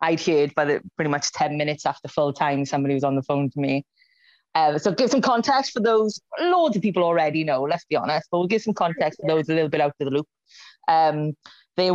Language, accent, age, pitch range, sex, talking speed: English, British, 20-39, 155-190 Hz, female, 245 wpm